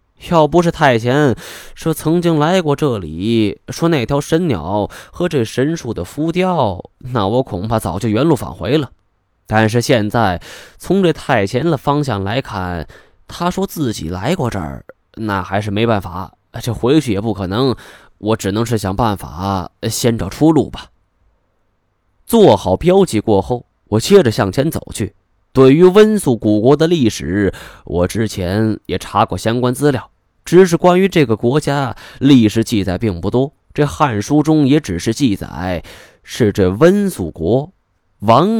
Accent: native